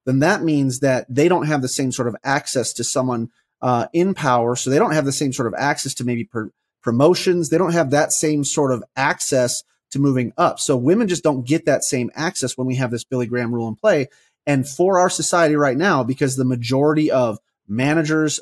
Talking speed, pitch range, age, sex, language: 220 wpm, 125-155 Hz, 30-49, male, English